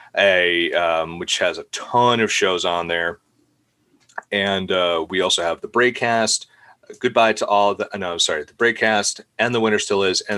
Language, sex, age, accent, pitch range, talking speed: English, male, 30-49, American, 95-120 Hz, 185 wpm